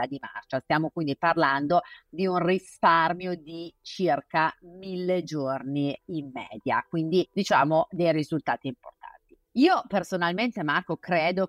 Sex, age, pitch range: female, 30-49, 145-180 Hz